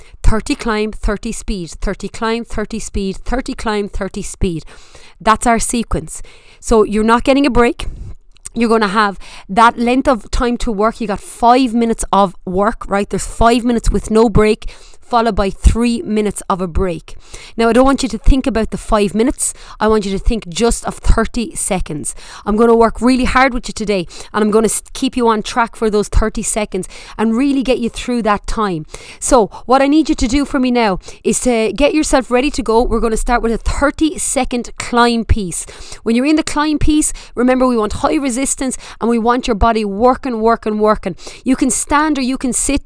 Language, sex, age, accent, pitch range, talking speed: English, female, 30-49, Irish, 210-250 Hz, 215 wpm